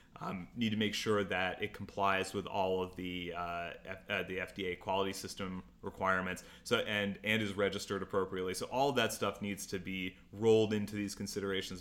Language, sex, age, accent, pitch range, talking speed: English, male, 30-49, American, 95-110 Hz, 195 wpm